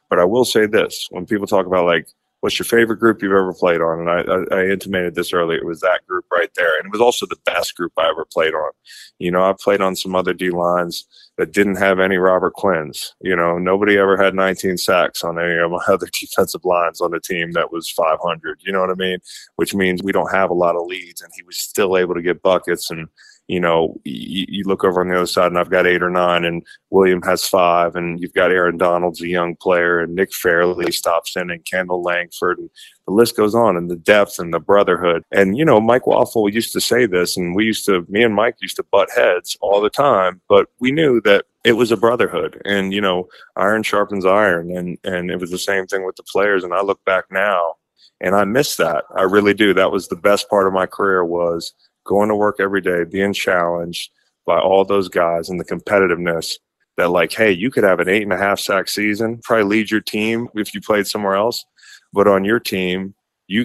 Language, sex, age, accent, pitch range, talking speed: English, male, 20-39, American, 90-105 Hz, 235 wpm